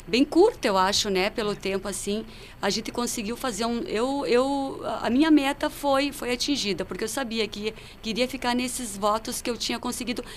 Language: Portuguese